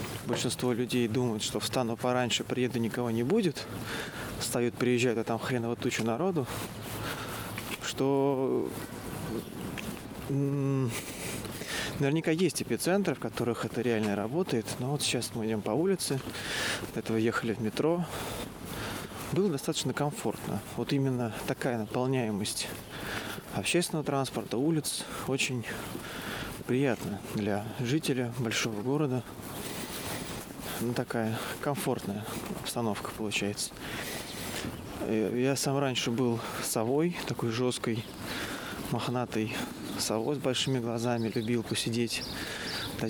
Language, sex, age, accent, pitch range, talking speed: Russian, male, 20-39, native, 115-140 Hz, 105 wpm